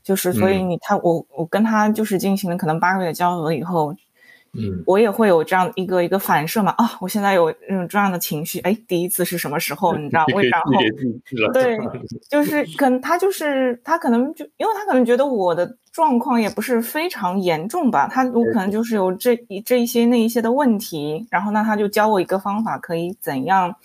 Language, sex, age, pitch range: Chinese, female, 20-39, 175-255 Hz